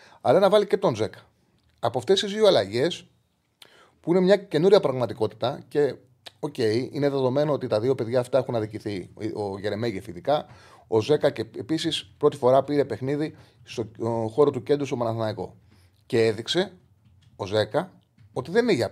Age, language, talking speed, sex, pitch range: 30-49, Greek, 170 wpm, male, 105-145 Hz